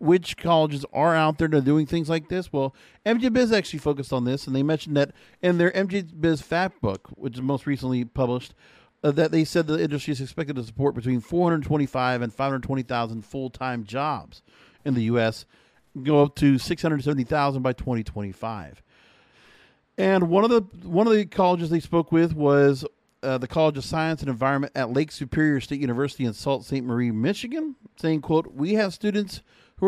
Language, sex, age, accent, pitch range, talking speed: English, male, 40-59, American, 135-180 Hz, 200 wpm